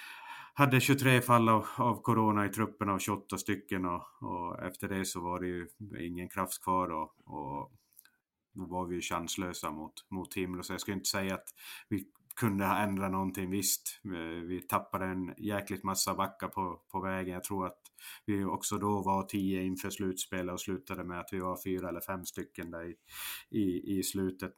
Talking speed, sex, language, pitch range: 190 wpm, male, Swedish, 95-105 Hz